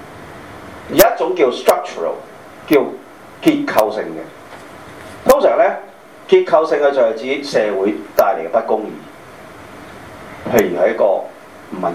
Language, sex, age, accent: Chinese, male, 40-59, native